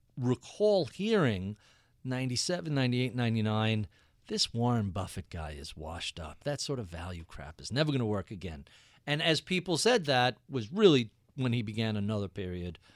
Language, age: English, 50-69